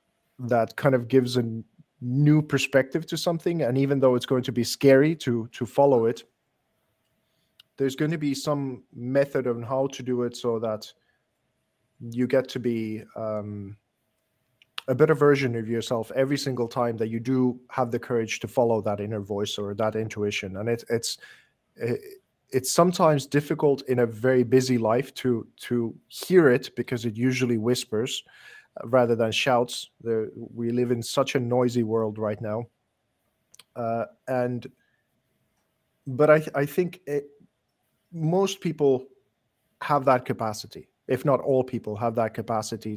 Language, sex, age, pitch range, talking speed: English, male, 20-39, 115-140 Hz, 155 wpm